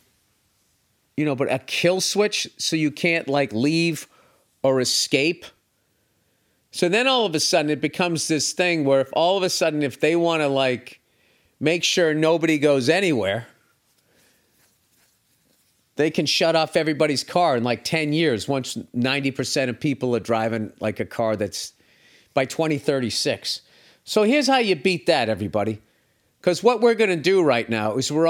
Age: 40-59